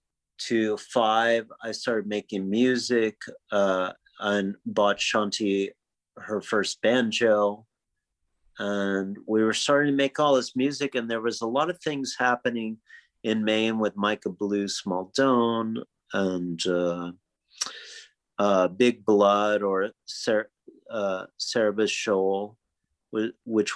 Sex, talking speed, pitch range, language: male, 115 wpm, 95-115 Hz, English